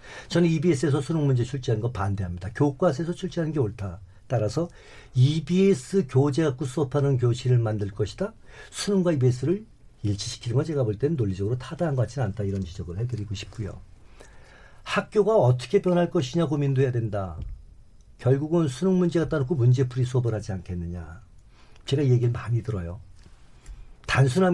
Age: 50-69